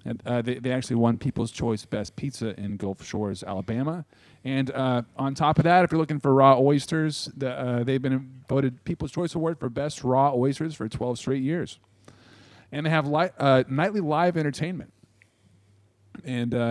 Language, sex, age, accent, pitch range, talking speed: English, male, 40-59, American, 110-150 Hz, 185 wpm